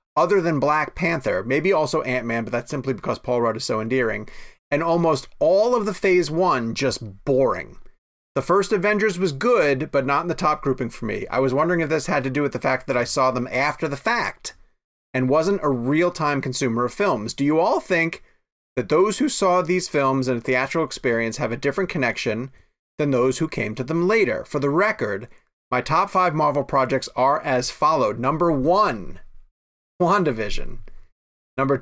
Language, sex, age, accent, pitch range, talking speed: English, male, 30-49, American, 125-165 Hz, 195 wpm